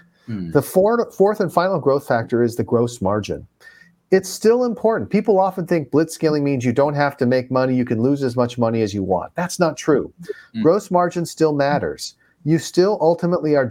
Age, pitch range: 40-59, 120-175 Hz